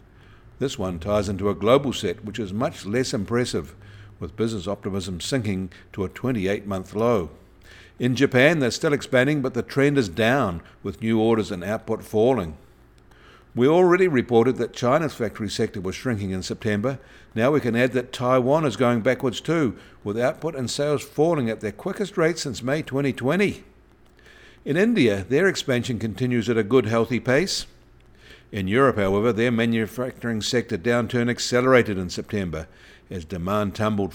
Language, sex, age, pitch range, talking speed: English, male, 60-79, 100-130 Hz, 165 wpm